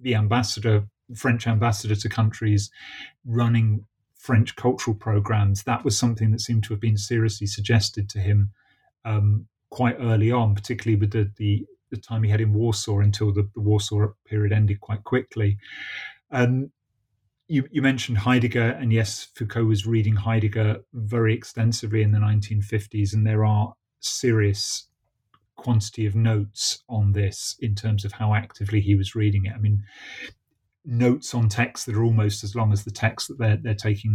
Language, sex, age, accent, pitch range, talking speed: English, male, 30-49, British, 105-115 Hz, 165 wpm